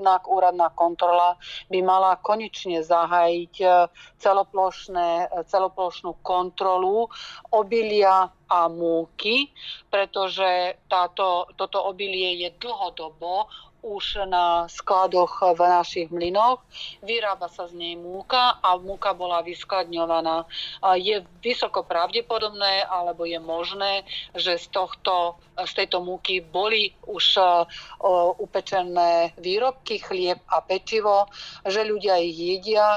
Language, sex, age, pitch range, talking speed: Slovak, female, 40-59, 175-195 Hz, 100 wpm